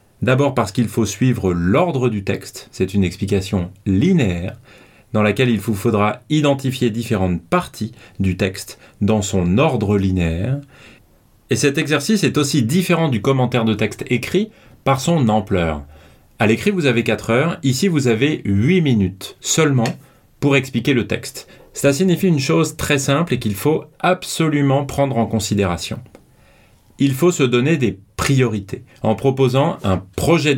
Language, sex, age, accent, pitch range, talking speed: French, male, 30-49, French, 105-140 Hz, 155 wpm